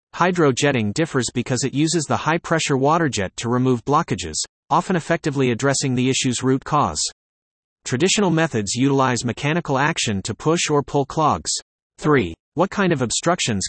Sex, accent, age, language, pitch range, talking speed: male, American, 30-49, English, 120-155 Hz, 150 wpm